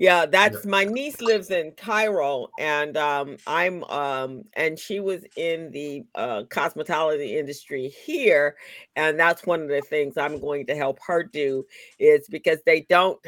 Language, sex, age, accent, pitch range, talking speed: English, female, 50-69, American, 145-215 Hz, 165 wpm